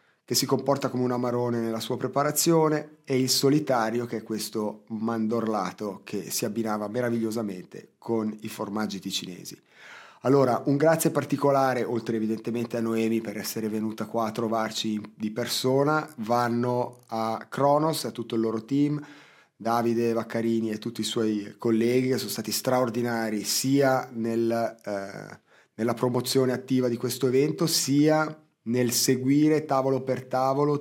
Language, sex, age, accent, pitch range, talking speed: Italian, male, 30-49, native, 115-135 Hz, 145 wpm